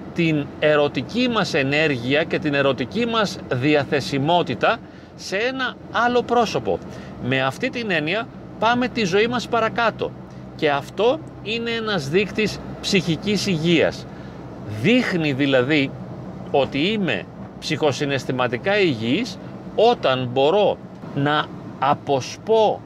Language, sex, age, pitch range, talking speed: Greek, male, 40-59, 145-190 Hz, 100 wpm